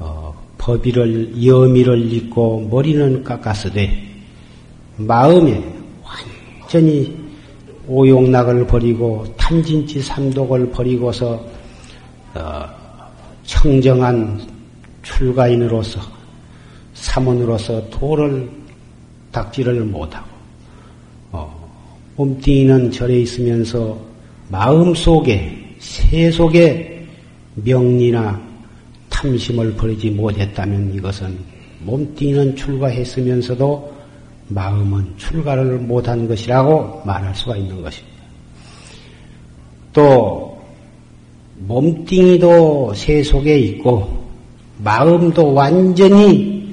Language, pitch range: Korean, 110-140 Hz